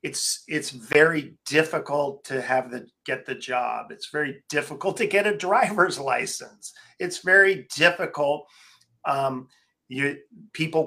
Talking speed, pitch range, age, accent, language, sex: 135 wpm, 135-155 Hz, 40-59, American, English, male